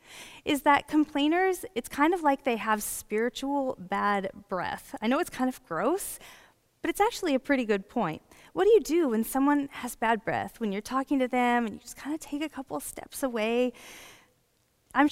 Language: English